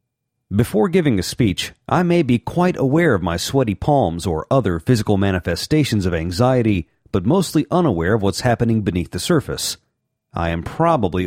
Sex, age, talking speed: male, 40-59, 165 wpm